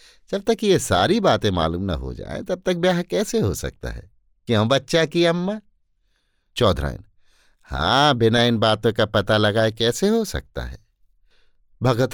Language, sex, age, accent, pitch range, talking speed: Hindi, male, 50-69, native, 90-155 Hz, 165 wpm